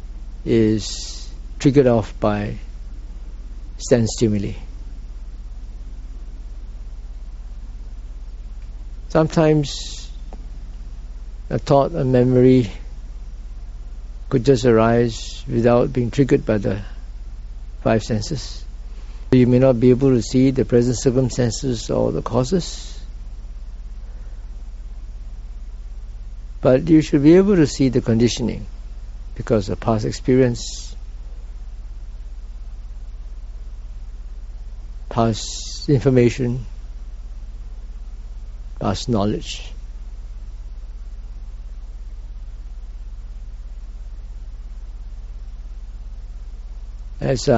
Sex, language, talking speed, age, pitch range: male, English, 65 wpm, 60-79, 100-120 Hz